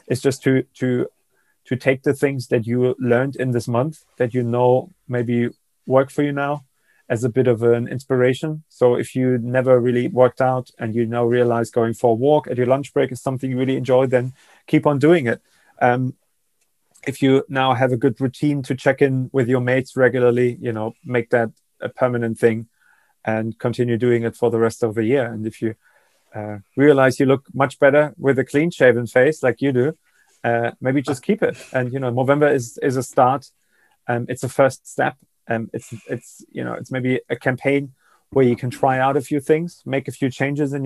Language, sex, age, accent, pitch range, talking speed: English, male, 30-49, German, 120-135 Hz, 215 wpm